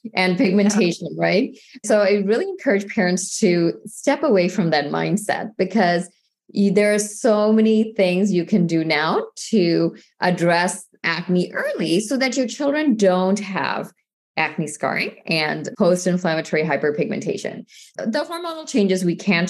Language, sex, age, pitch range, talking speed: English, female, 20-39, 170-210 Hz, 135 wpm